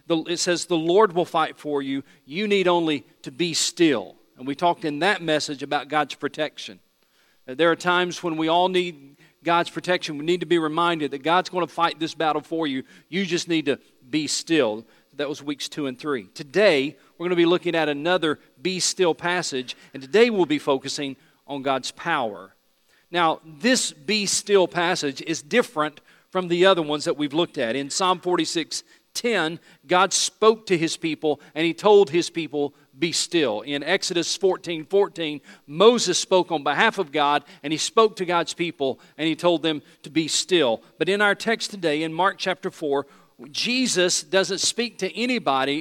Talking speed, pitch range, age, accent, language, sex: 190 wpm, 150-190 Hz, 40-59, American, English, male